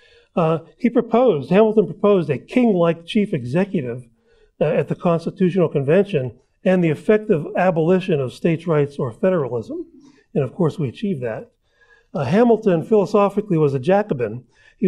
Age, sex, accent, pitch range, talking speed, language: 40-59, male, American, 145-190 Hz, 150 wpm, English